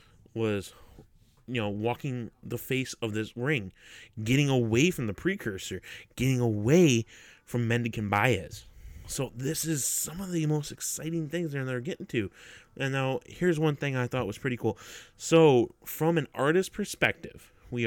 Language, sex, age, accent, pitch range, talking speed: English, male, 30-49, American, 110-155 Hz, 160 wpm